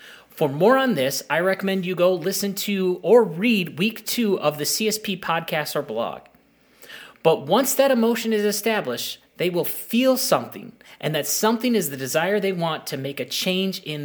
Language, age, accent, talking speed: English, 30-49, American, 185 wpm